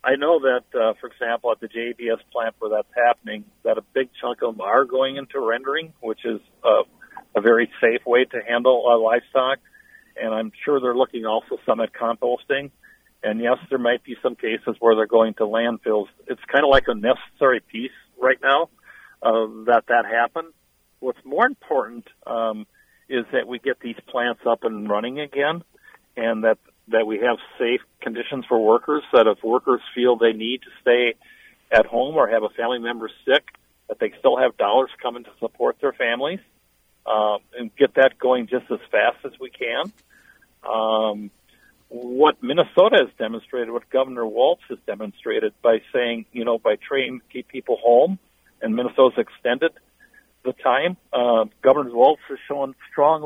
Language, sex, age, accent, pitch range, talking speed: English, male, 50-69, American, 115-135 Hz, 180 wpm